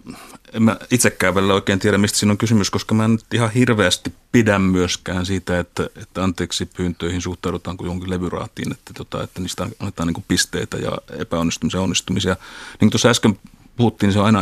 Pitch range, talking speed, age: 90-105 Hz, 185 wpm, 30-49